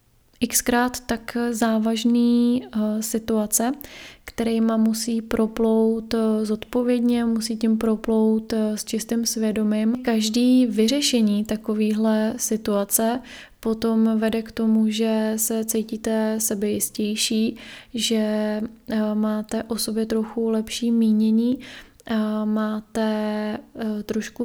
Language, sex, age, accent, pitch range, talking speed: Czech, female, 20-39, native, 215-230 Hz, 90 wpm